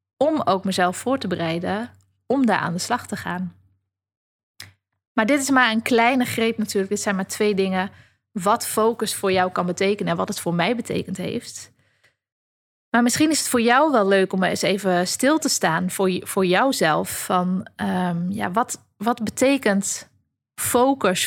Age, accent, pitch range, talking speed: 20-39, Dutch, 175-235 Hz, 165 wpm